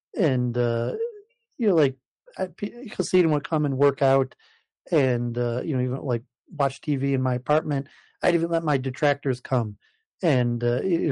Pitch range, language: 130-160 Hz, English